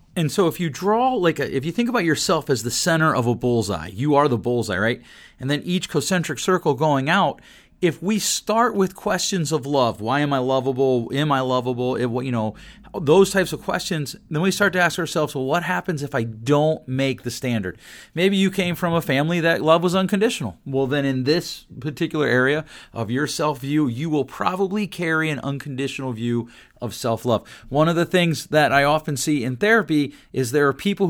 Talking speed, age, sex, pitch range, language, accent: 205 wpm, 40-59, male, 125-165 Hz, English, American